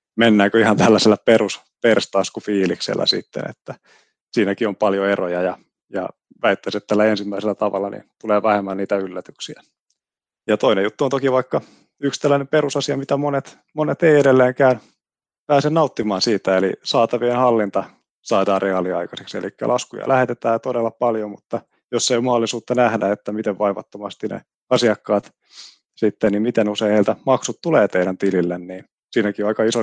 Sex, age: male, 30-49